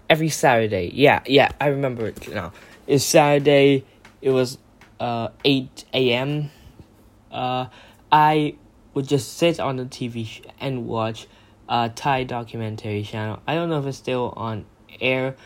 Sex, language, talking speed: male, English, 135 wpm